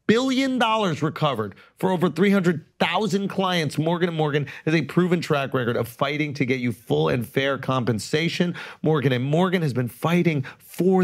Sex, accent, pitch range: male, American, 135-185 Hz